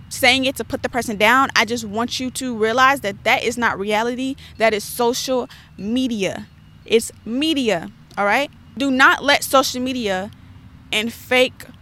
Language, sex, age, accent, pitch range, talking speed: English, female, 20-39, American, 210-255 Hz, 170 wpm